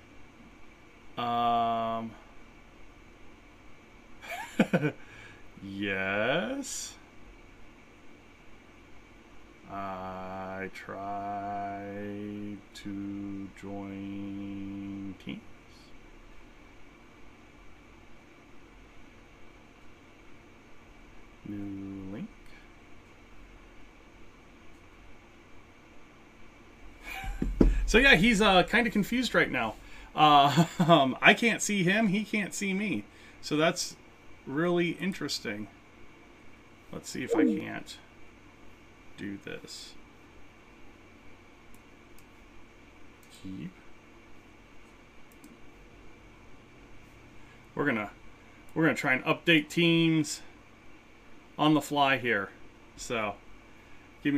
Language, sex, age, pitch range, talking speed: English, male, 30-49, 100-165 Hz, 60 wpm